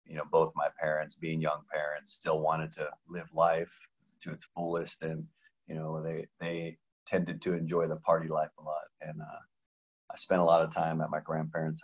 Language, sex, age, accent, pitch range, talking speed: English, male, 30-49, American, 75-80 Hz, 205 wpm